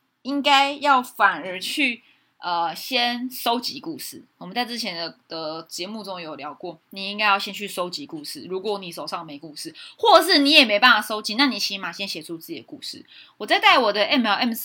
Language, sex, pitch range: Chinese, female, 200-280 Hz